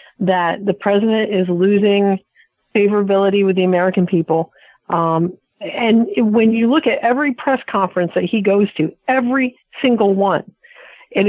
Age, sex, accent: 50-69, female, American